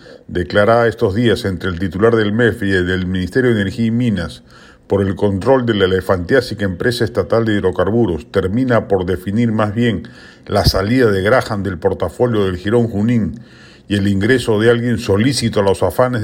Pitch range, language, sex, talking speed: 100-120 Hz, Spanish, male, 175 wpm